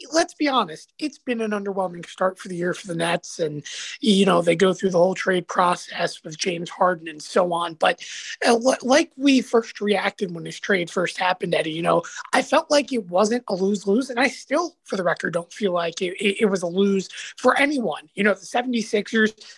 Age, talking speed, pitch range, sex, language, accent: 20-39, 220 wpm, 185-245 Hz, male, English, American